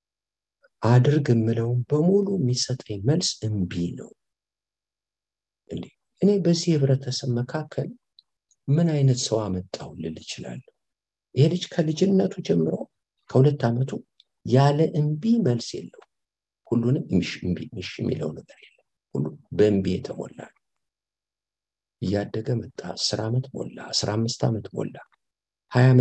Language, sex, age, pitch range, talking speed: English, male, 50-69, 110-150 Hz, 60 wpm